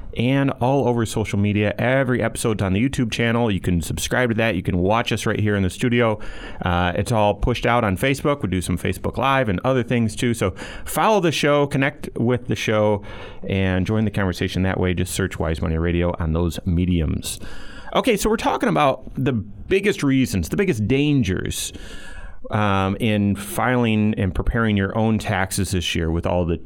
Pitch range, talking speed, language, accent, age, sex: 95-125 Hz, 195 wpm, English, American, 30-49, male